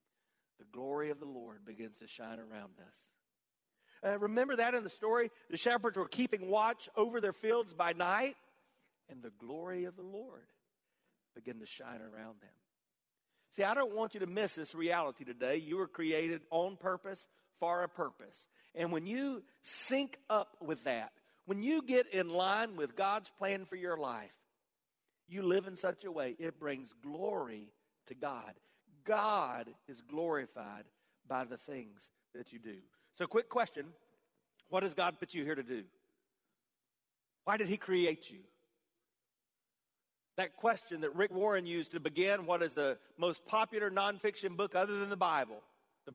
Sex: male